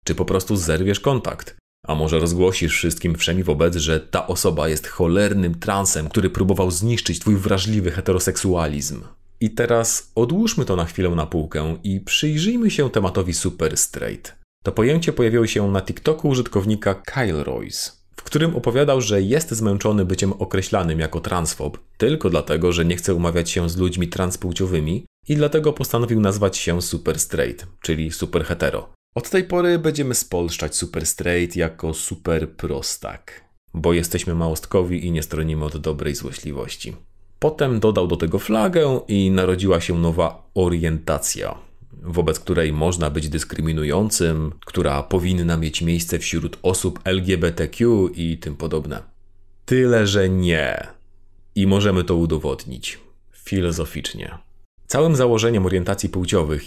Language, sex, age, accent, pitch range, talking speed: Polish, male, 30-49, native, 85-100 Hz, 140 wpm